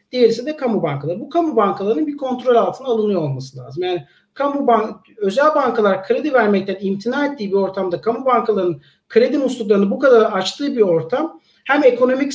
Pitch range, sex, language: 185-240 Hz, male, Turkish